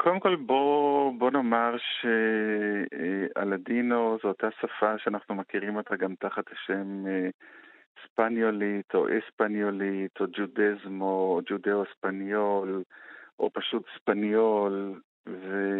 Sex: male